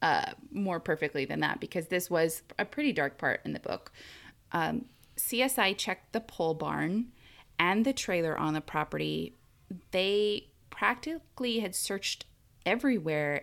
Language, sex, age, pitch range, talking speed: English, female, 20-39, 165-220 Hz, 145 wpm